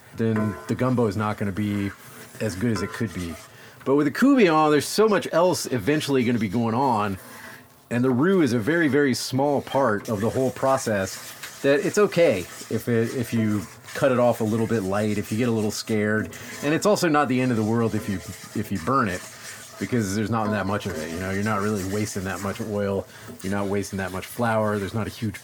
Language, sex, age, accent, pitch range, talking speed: English, male, 30-49, American, 105-130 Hz, 240 wpm